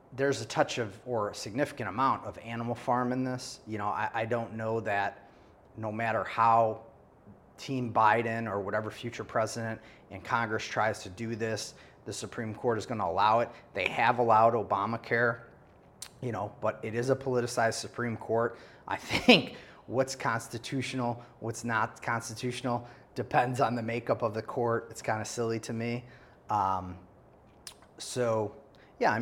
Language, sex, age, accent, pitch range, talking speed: English, male, 30-49, American, 105-120 Hz, 165 wpm